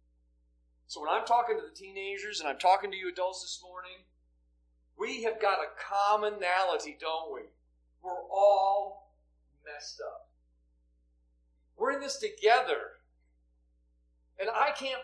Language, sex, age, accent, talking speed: English, male, 40-59, American, 130 wpm